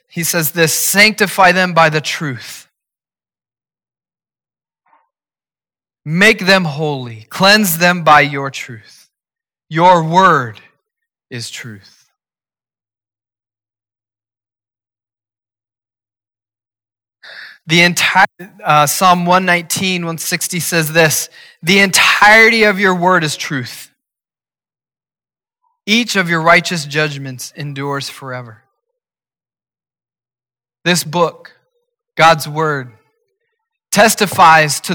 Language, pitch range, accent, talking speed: English, 135-185 Hz, American, 80 wpm